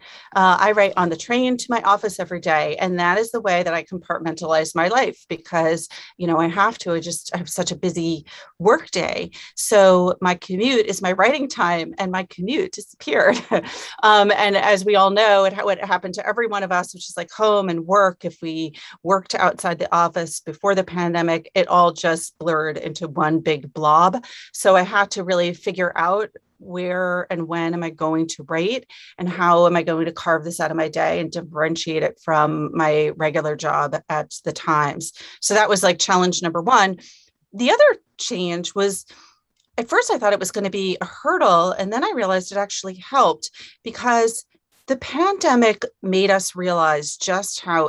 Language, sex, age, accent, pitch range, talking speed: English, female, 30-49, American, 165-200 Hz, 200 wpm